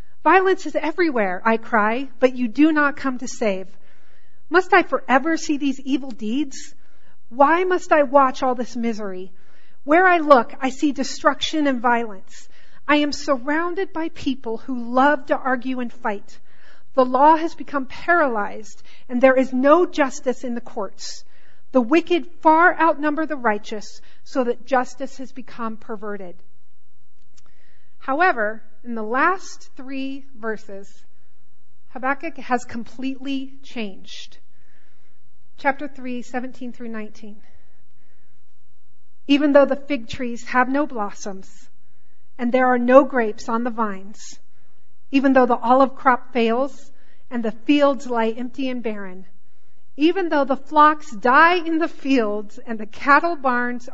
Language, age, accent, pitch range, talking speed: English, 40-59, American, 225-285 Hz, 140 wpm